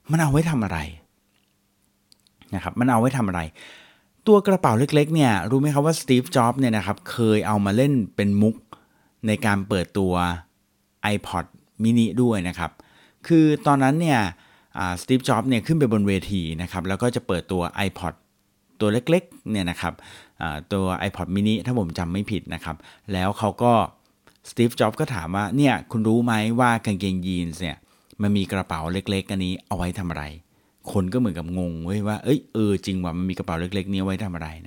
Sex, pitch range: male, 90-120 Hz